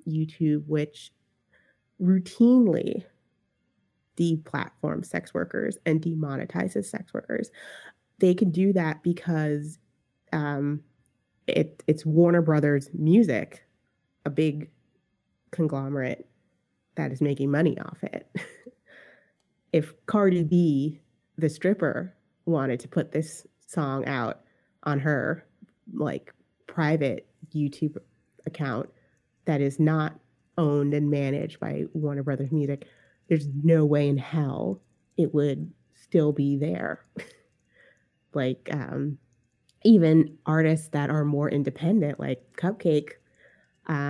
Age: 30-49